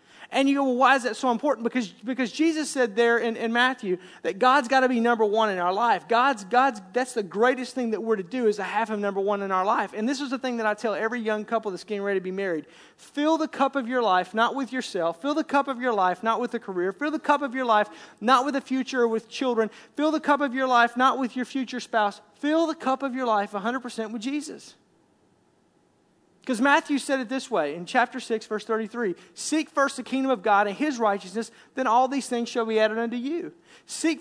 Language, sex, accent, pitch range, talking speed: English, male, American, 220-275 Hz, 255 wpm